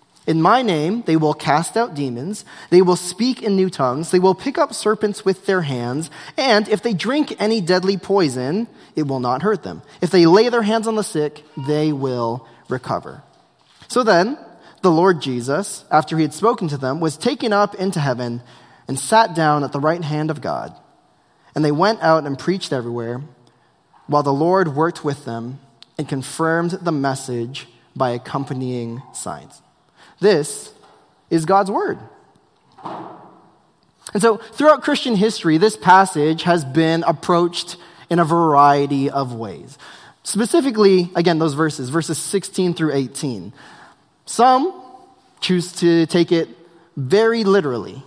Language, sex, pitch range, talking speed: English, male, 145-200 Hz, 155 wpm